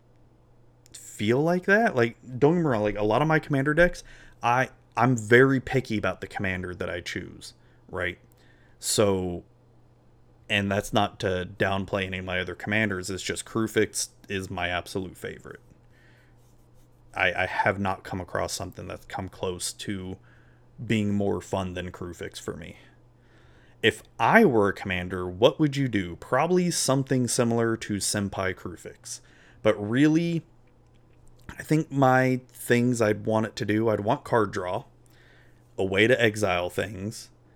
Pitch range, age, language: 95-120 Hz, 30-49, English